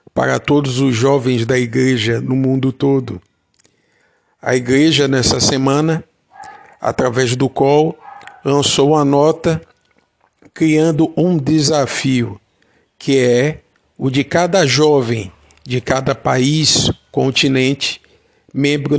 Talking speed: 105 wpm